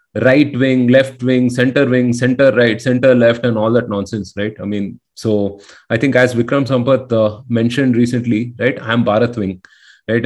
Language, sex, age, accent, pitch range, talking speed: Tamil, male, 30-49, native, 115-135 Hz, 185 wpm